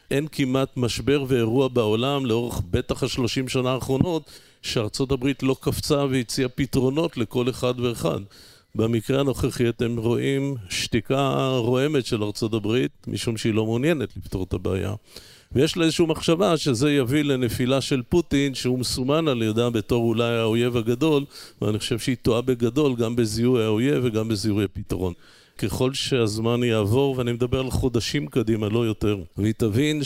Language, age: Hebrew, 50-69